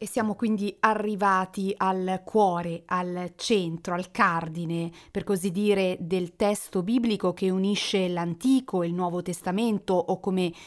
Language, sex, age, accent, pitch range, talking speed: Italian, female, 30-49, native, 180-220 Hz, 140 wpm